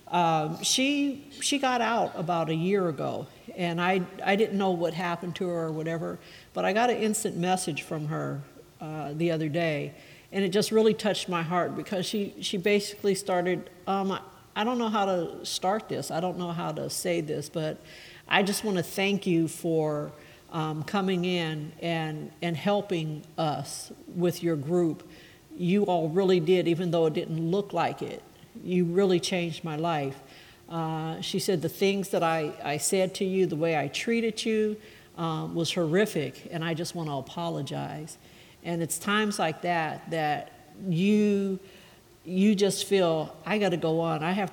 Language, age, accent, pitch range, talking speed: English, 60-79, American, 160-195 Hz, 180 wpm